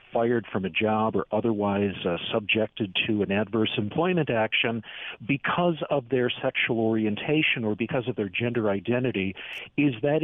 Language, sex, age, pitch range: English, male, 50-69, 110-140 Hz